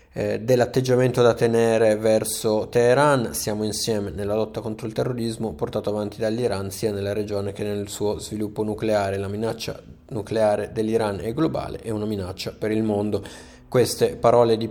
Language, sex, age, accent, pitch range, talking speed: Italian, male, 20-39, native, 105-115 Hz, 155 wpm